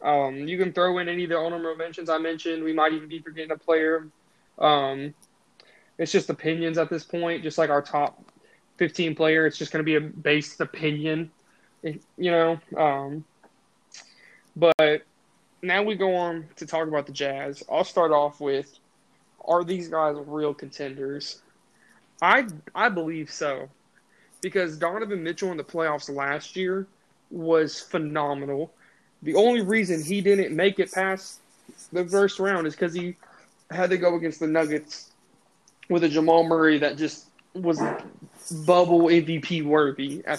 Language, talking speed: English, 160 wpm